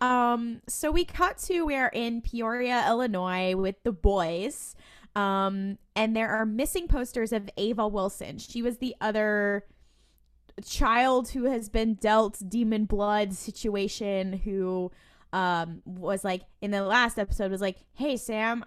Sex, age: female, 20-39